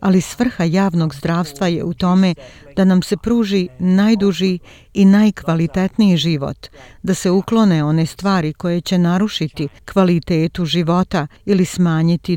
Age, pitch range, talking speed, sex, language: 50-69, 165-190 Hz, 130 wpm, female, Croatian